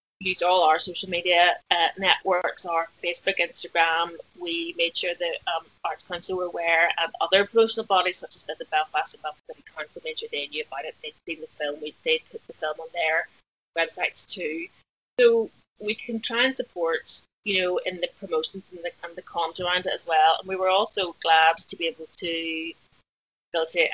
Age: 30-49